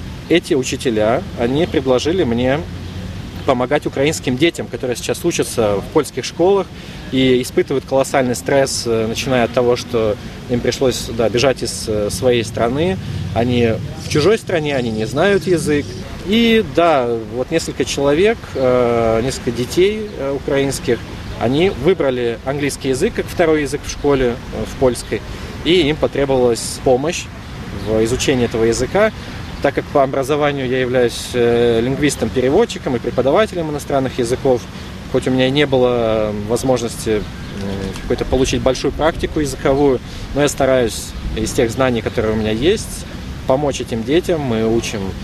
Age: 20-39